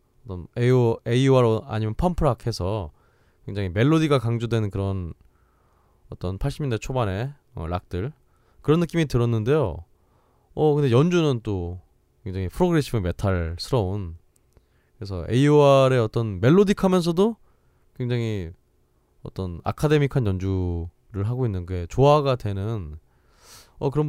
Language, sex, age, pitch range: Korean, male, 20-39, 95-145 Hz